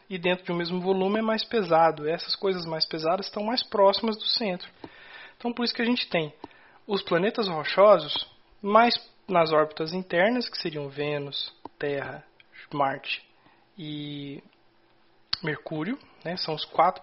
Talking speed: 150 wpm